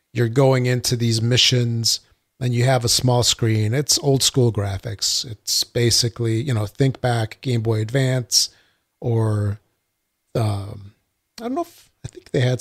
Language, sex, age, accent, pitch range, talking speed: English, male, 40-59, American, 110-125 Hz, 160 wpm